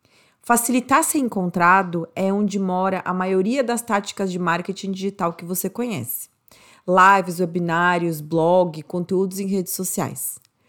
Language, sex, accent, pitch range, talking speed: Portuguese, female, Brazilian, 170-205 Hz, 130 wpm